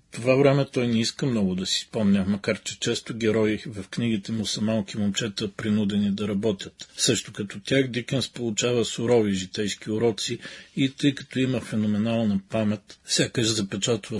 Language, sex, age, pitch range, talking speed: Bulgarian, male, 40-59, 105-120 Hz, 160 wpm